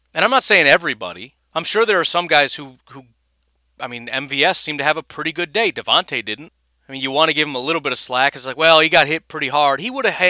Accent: American